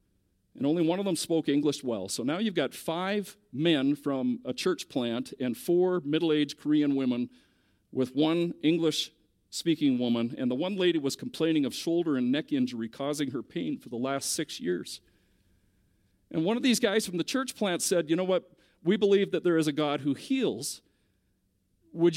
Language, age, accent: English, 50-69, American